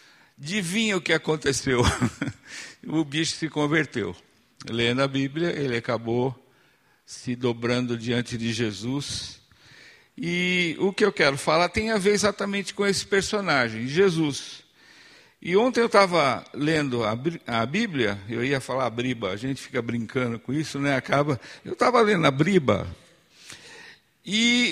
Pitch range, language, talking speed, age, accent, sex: 130-195 Hz, Portuguese, 140 wpm, 60-79, Brazilian, male